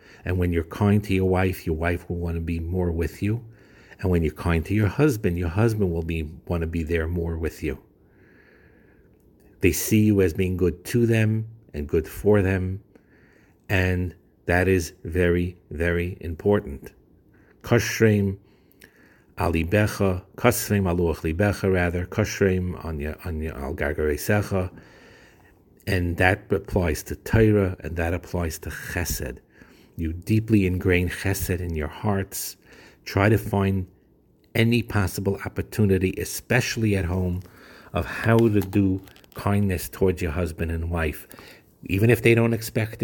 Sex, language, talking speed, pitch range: male, English, 145 wpm, 85-105 Hz